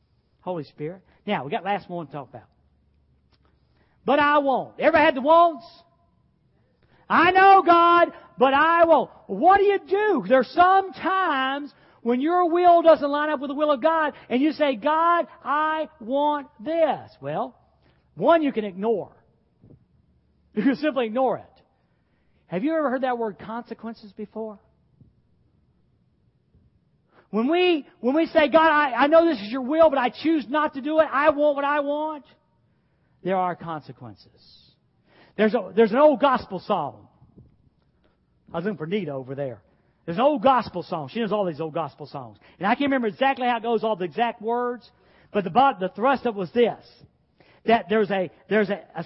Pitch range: 210-310 Hz